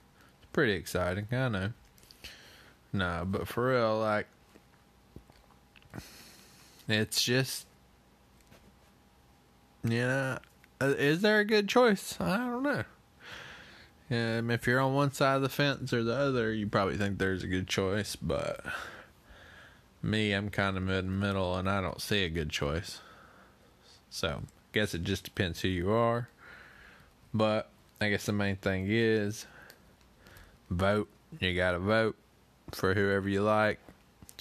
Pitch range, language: 90-120 Hz, English